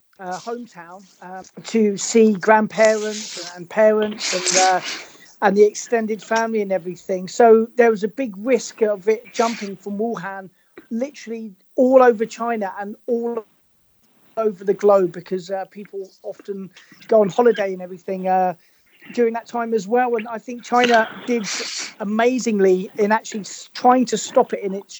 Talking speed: 155 wpm